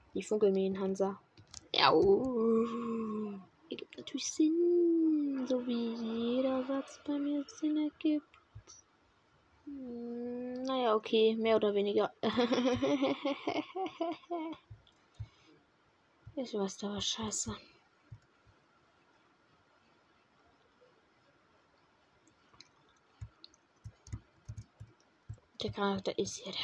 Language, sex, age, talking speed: German, female, 20-39, 80 wpm